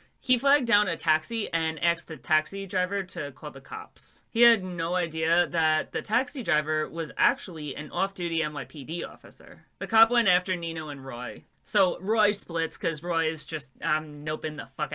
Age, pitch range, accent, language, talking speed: 30-49, 155-200 Hz, American, English, 185 wpm